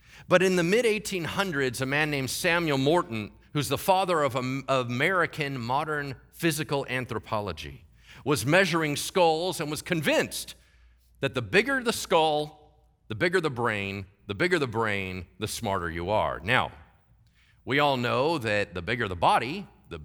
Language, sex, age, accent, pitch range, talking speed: English, male, 40-59, American, 100-160 Hz, 150 wpm